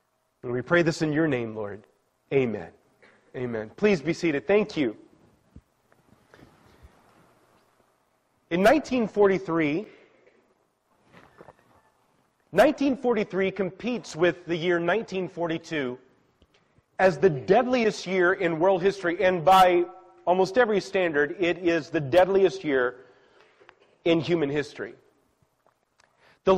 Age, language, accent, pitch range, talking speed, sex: 30-49, English, American, 165-210 Hz, 95 wpm, male